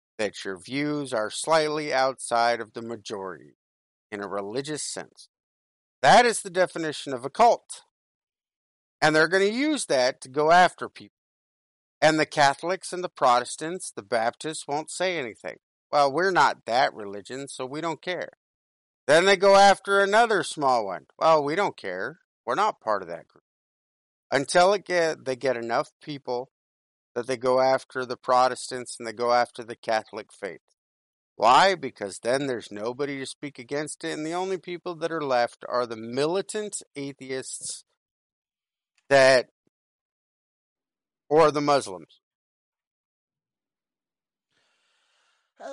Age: 50-69